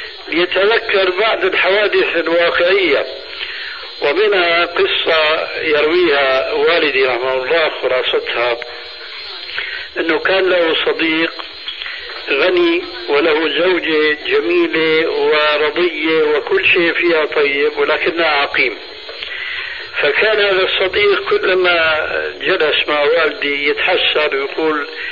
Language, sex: Arabic, male